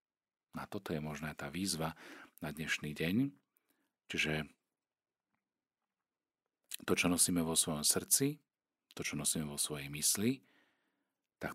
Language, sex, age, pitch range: Slovak, male, 40-59, 75-90 Hz